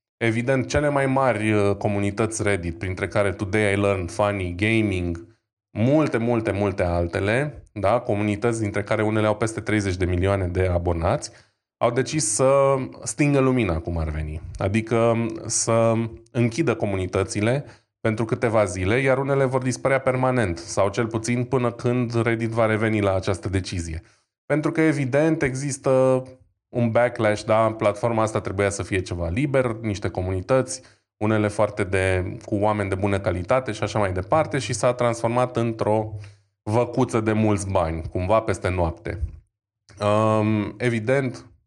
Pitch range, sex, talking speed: 100-120 Hz, male, 140 wpm